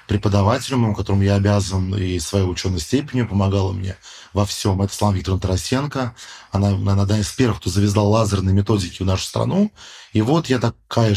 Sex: male